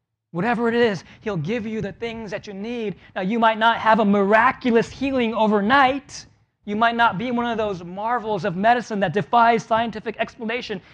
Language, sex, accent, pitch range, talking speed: English, male, American, 155-235 Hz, 185 wpm